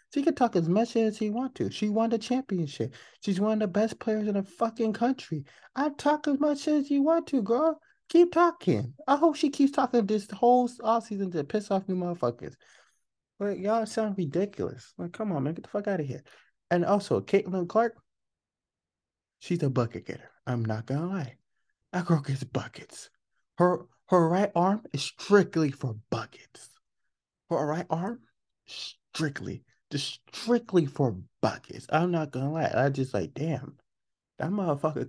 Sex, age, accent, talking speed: male, 30-49, American, 180 wpm